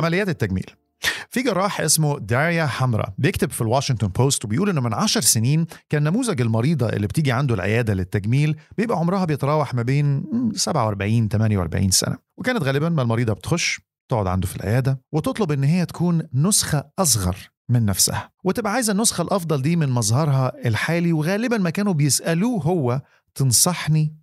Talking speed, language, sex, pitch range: 155 wpm, Arabic, male, 115-165 Hz